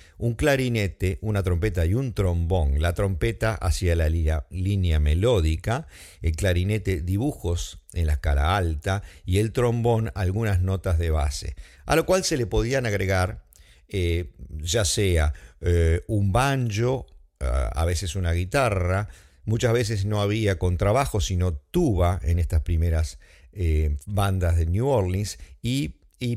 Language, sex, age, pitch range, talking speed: English, male, 50-69, 85-110 Hz, 140 wpm